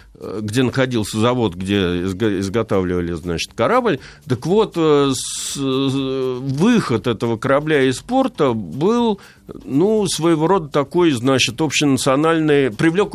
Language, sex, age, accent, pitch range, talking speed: Russian, male, 50-69, native, 115-160 Hz, 105 wpm